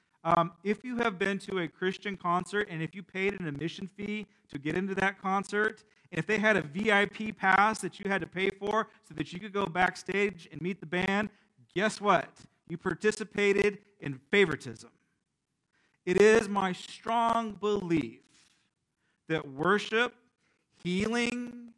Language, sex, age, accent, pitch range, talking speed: English, male, 40-59, American, 155-210 Hz, 155 wpm